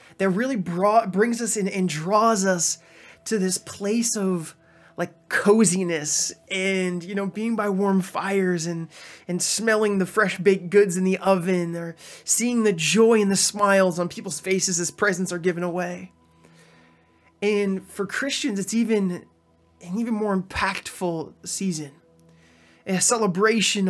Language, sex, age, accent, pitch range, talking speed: English, male, 20-39, American, 170-210 Hz, 150 wpm